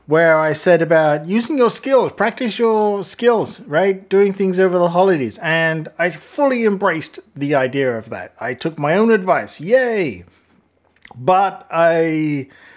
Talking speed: 150 wpm